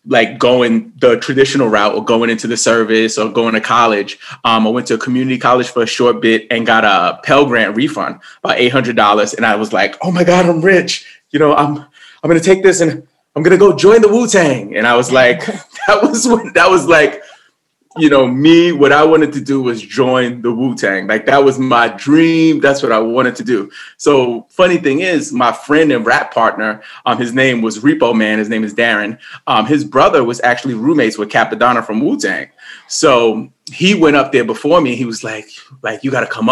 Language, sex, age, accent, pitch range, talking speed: English, male, 30-49, American, 115-155 Hz, 225 wpm